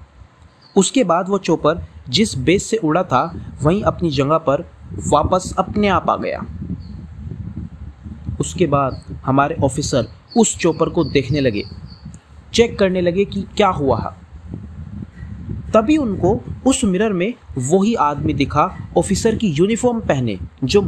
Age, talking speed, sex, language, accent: 30-49, 130 wpm, male, Hindi, native